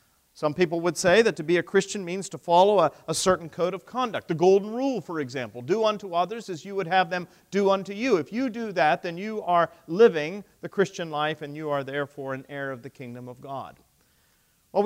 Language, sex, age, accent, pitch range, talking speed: English, male, 40-59, American, 140-190 Hz, 230 wpm